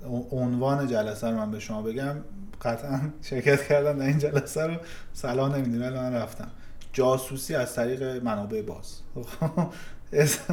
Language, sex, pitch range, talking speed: Persian, male, 110-140 Hz, 140 wpm